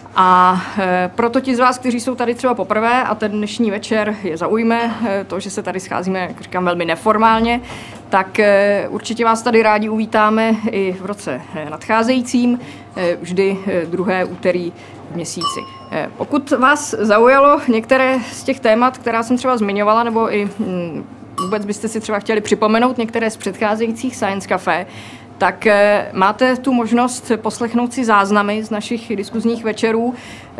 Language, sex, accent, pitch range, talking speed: Czech, female, native, 185-230 Hz, 145 wpm